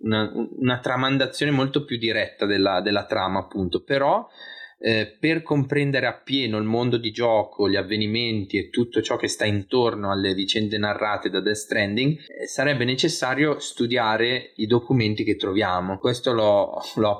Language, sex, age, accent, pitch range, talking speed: Italian, male, 20-39, native, 100-130 Hz, 150 wpm